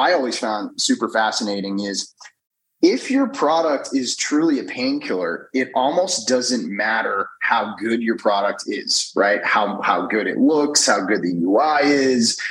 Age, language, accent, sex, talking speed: 30-49, English, American, male, 155 wpm